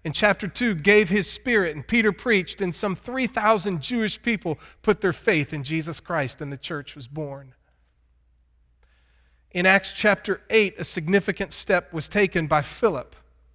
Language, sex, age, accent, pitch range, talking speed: English, male, 40-59, American, 130-195 Hz, 160 wpm